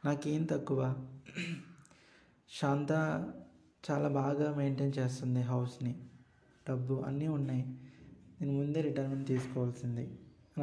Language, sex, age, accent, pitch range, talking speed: Telugu, male, 20-39, native, 135-155 Hz, 90 wpm